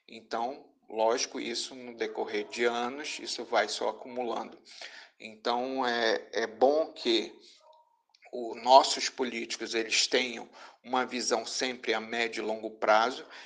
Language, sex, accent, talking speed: Portuguese, male, Brazilian, 125 wpm